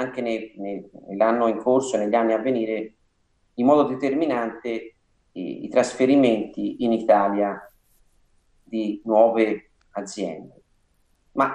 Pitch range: 100-120 Hz